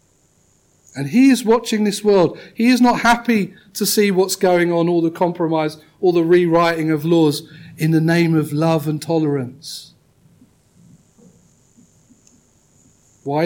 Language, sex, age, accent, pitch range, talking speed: English, male, 40-59, British, 135-190 Hz, 140 wpm